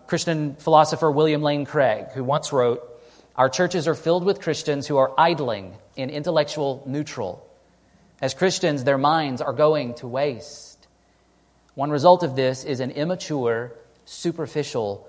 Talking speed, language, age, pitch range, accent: 145 wpm, English, 30-49, 130-160 Hz, American